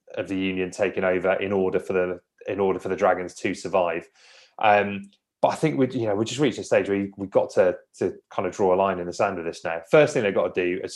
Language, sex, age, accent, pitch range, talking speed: English, male, 20-39, British, 95-120 Hz, 285 wpm